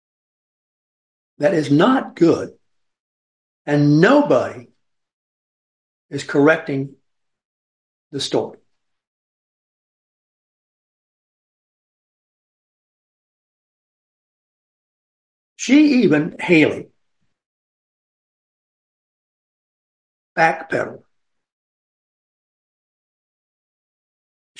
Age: 50-69